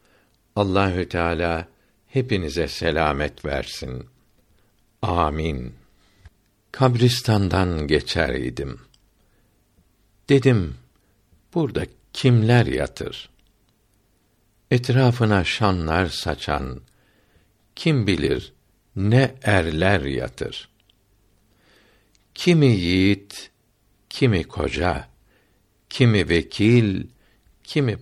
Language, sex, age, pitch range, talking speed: Turkish, male, 60-79, 85-110 Hz, 60 wpm